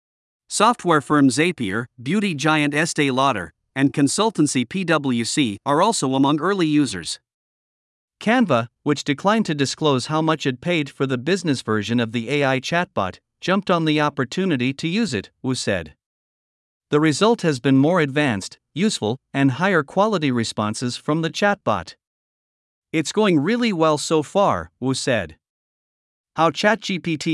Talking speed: 140 wpm